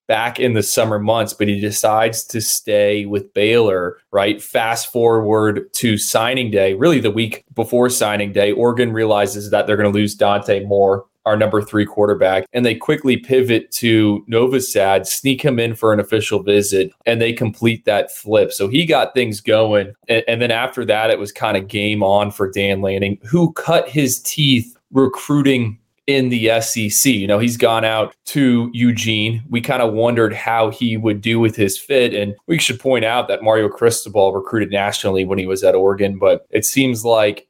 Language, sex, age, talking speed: English, male, 20-39, 190 wpm